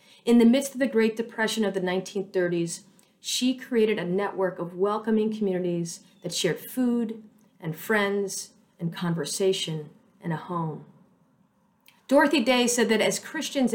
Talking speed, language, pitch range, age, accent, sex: 145 wpm, English, 180-220 Hz, 40-59, American, female